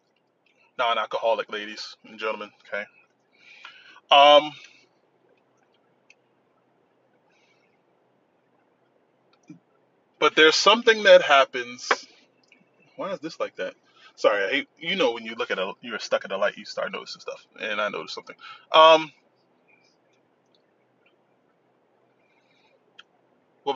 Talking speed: 100 wpm